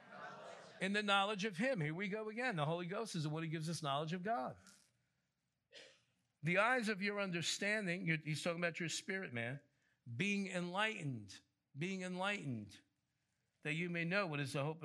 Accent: American